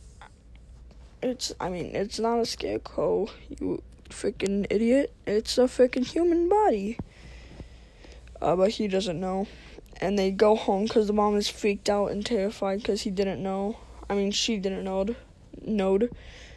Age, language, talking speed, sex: 10-29, English, 150 wpm, female